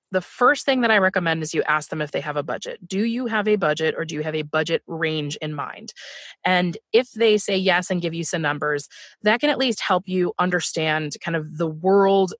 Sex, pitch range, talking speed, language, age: female, 160-210 Hz, 240 wpm, English, 20-39